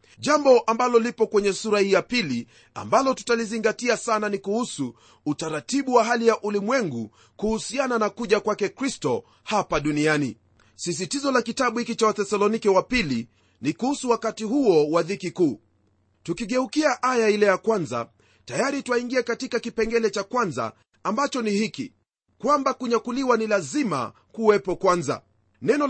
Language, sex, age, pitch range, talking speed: Swahili, male, 40-59, 175-245 Hz, 140 wpm